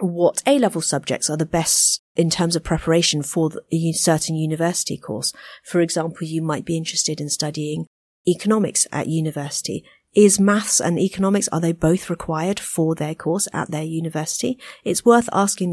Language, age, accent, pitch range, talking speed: English, 40-59, British, 165-215 Hz, 165 wpm